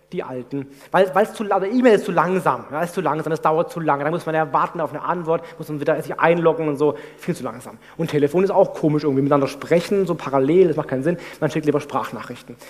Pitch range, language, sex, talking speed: 150-220 Hz, German, male, 240 wpm